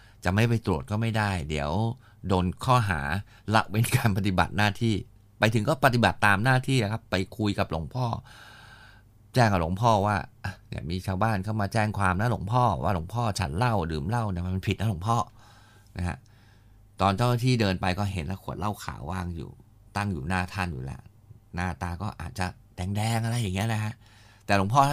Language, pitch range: Thai, 100-115 Hz